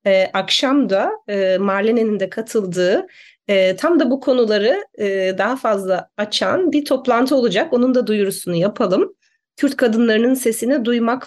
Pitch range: 185-240 Hz